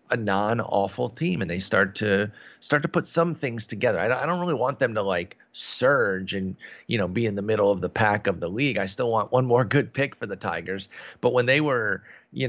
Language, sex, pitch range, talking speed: English, male, 95-125 Hz, 240 wpm